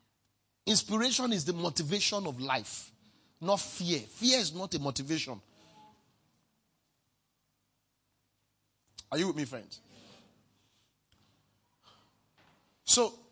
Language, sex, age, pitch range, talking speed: English, male, 30-49, 115-180 Hz, 85 wpm